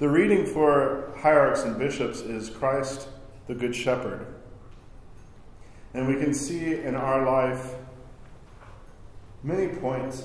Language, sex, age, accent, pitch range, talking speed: English, male, 40-59, American, 110-135 Hz, 115 wpm